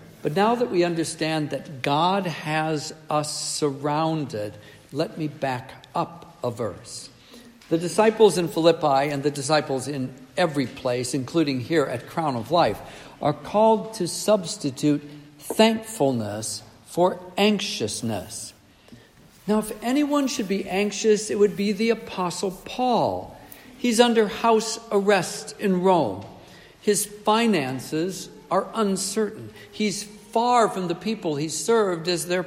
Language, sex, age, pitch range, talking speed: English, male, 60-79, 145-205 Hz, 130 wpm